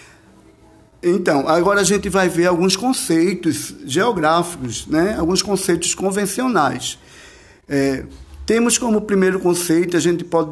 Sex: male